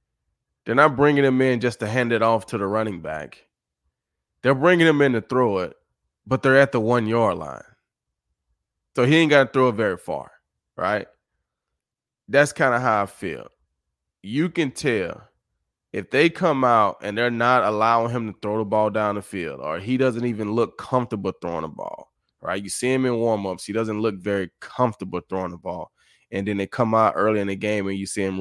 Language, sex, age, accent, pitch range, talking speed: English, male, 20-39, American, 95-120 Hz, 210 wpm